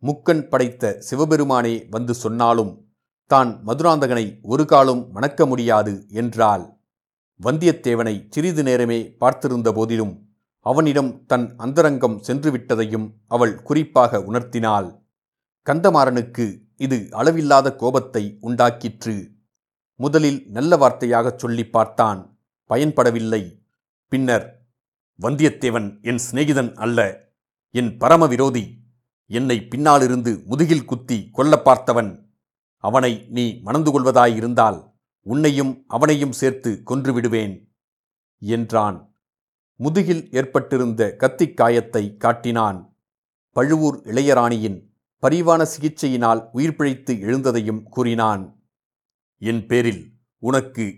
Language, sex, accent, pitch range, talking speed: Tamil, male, native, 115-140 Hz, 85 wpm